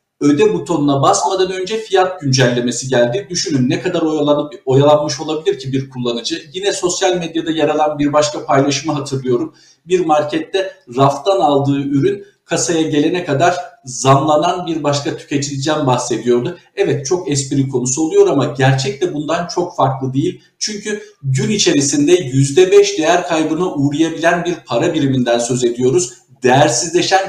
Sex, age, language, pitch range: male, 50-69, Turkish, 135-185 Hz